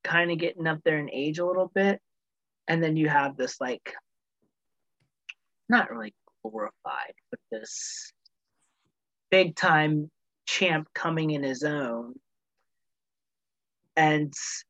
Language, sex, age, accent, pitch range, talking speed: English, male, 30-49, American, 140-170 Hz, 120 wpm